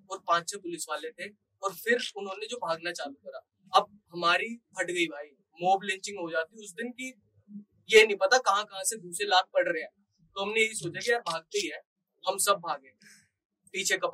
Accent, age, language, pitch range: native, 20-39, Hindi, 175-260 Hz